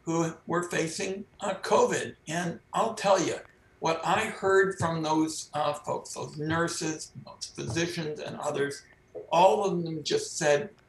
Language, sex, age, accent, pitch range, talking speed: English, male, 60-79, American, 155-190 Hz, 145 wpm